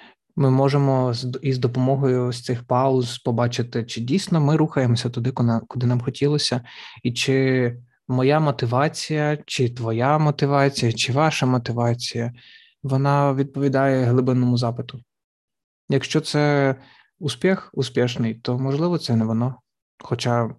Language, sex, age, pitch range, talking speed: Ukrainian, male, 20-39, 120-145 Hz, 115 wpm